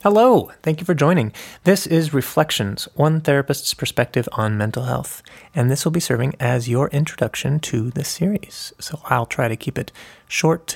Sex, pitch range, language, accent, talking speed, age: male, 115-150 Hz, English, American, 180 wpm, 30-49